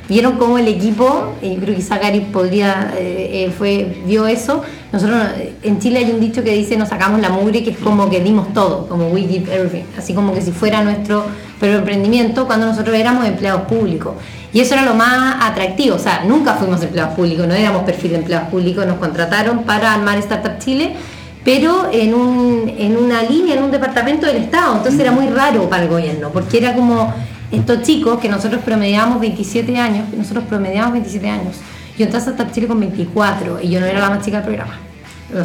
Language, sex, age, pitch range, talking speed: Spanish, female, 20-39, 195-245 Hz, 205 wpm